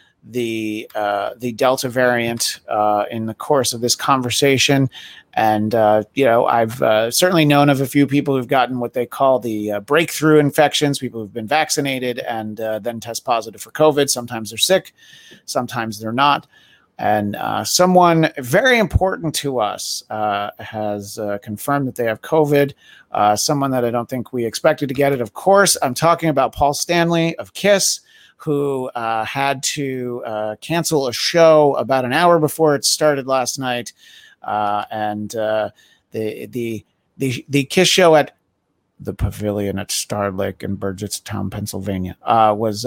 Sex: male